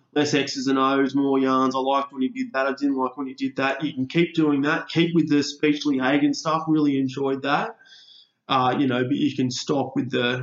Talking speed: 240 wpm